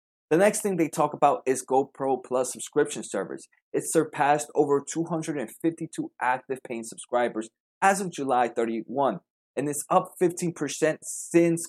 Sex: male